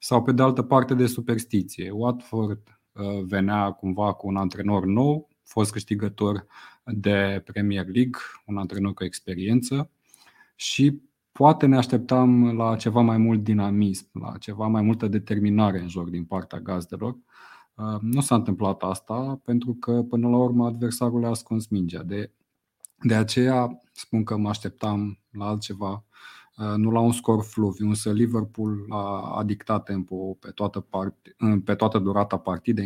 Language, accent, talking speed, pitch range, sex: Romanian, native, 150 wpm, 100-120 Hz, male